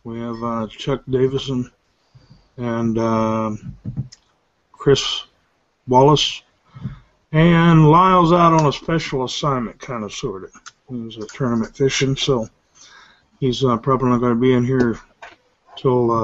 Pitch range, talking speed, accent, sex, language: 125-150 Hz, 120 wpm, American, male, English